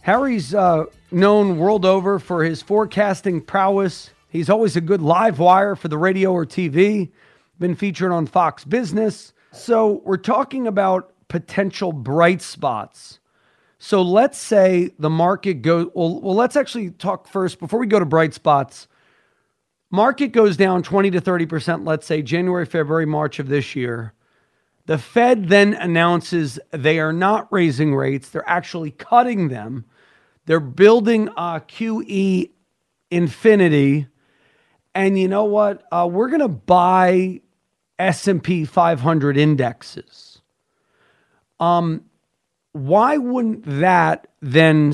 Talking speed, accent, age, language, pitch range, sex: 130 wpm, American, 40-59, English, 160-200 Hz, male